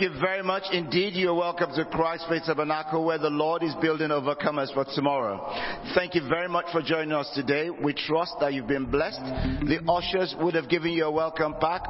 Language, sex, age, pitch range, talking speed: English, male, 50-69, 140-165 Hz, 205 wpm